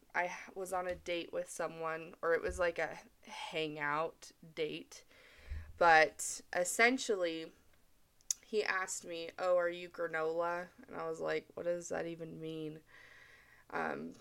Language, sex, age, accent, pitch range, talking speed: English, female, 20-39, American, 160-190 Hz, 140 wpm